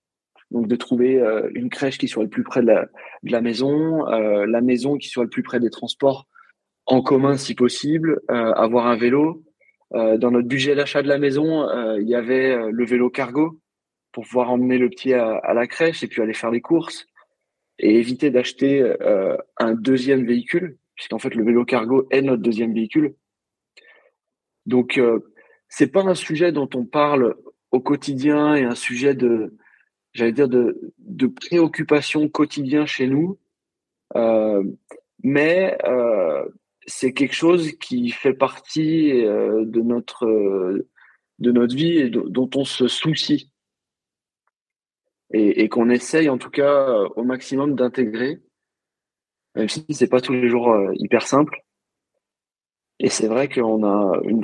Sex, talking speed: male, 170 wpm